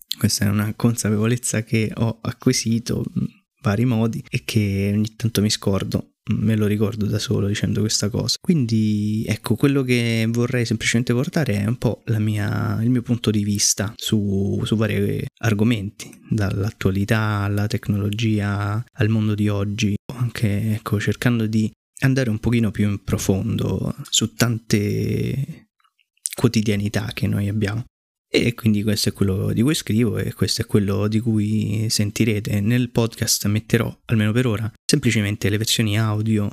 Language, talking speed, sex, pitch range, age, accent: Italian, 155 wpm, male, 105-120 Hz, 20-39, native